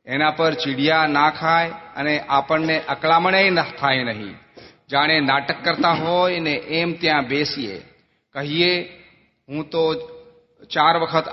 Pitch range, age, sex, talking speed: 140-160 Hz, 40-59, male, 60 wpm